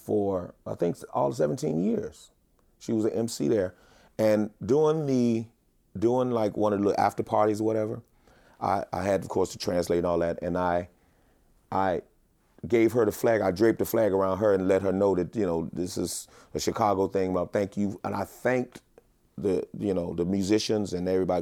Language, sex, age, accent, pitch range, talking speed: English, male, 30-49, American, 90-110 Hz, 200 wpm